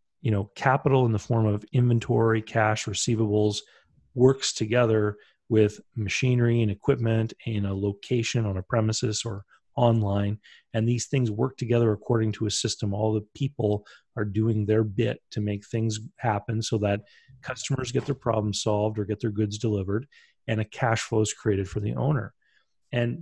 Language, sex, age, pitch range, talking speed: English, male, 40-59, 105-130 Hz, 170 wpm